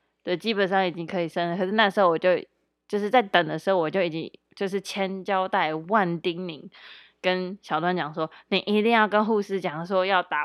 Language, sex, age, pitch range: Chinese, female, 20-39, 170-205 Hz